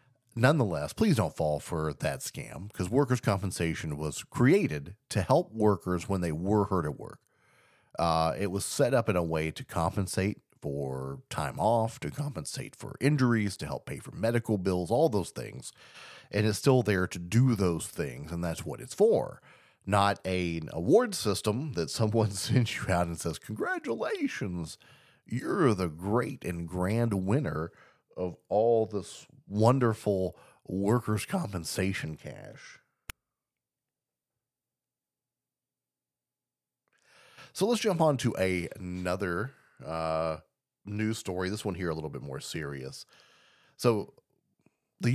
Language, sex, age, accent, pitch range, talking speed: English, male, 40-59, American, 85-110 Hz, 140 wpm